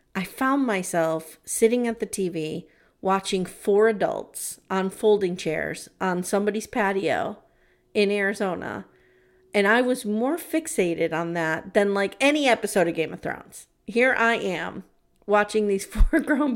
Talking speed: 145 wpm